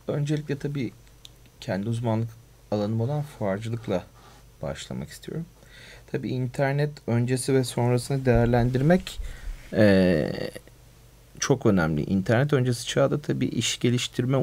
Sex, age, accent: male, 40-59, native